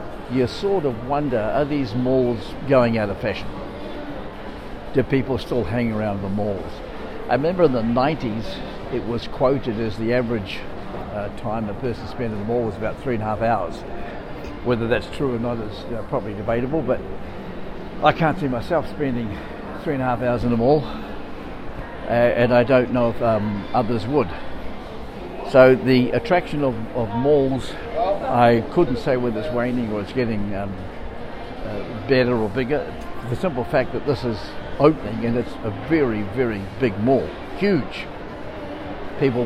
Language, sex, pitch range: English, male, 110-130 Hz